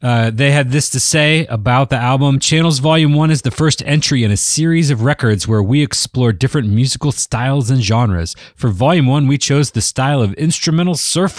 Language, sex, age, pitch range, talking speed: English, male, 30-49, 110-150 Hz, 205 wpm